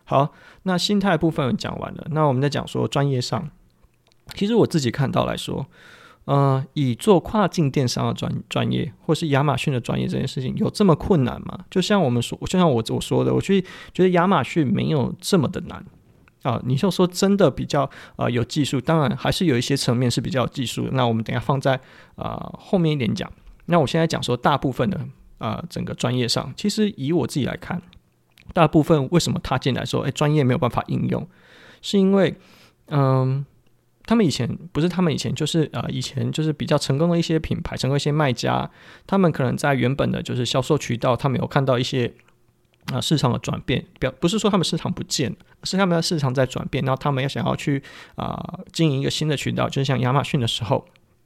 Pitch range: 125-170 Hz